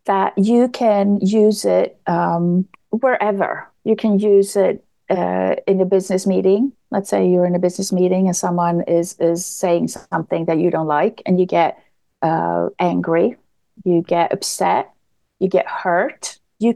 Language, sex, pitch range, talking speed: English, female, 190-230 Hz, 160 wpm